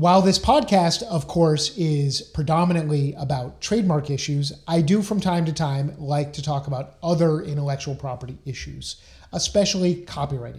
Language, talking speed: English, 145 wpm